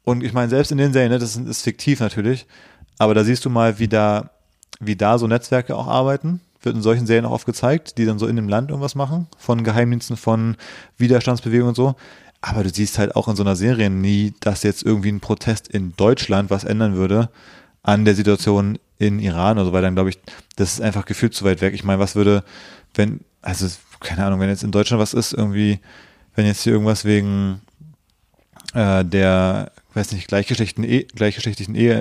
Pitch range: 100-115 Hz